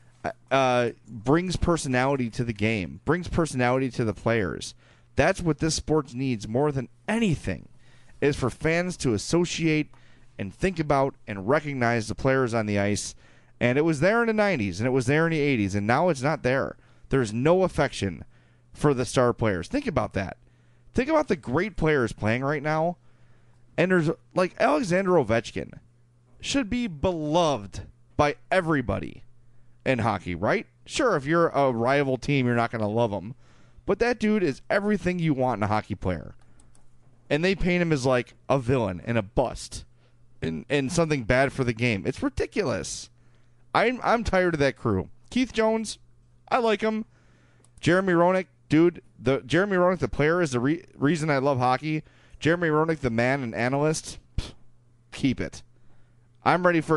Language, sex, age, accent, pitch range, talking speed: English, male, 30-49, American, 120-160 Hz, 170 wpm